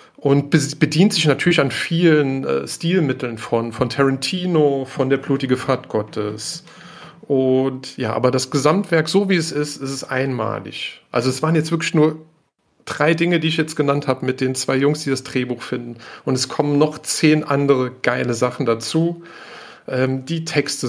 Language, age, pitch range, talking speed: German, 40-59, 130-160 Hz, 175 wpm